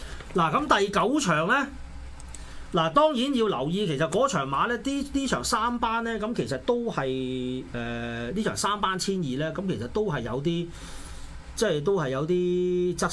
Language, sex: Chinese, male